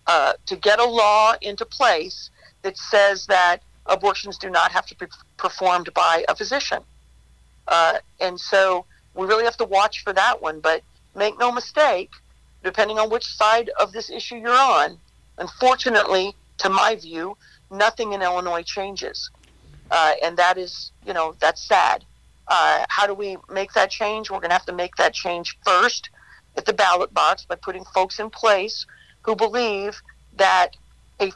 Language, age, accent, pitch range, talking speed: English, 50-69, American, 170-210 Hz, 170 wpm